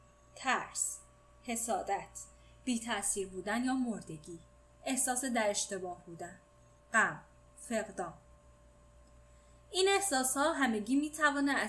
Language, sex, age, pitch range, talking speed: Persian, female, 10-29, 195-275 Hz, 100 wpm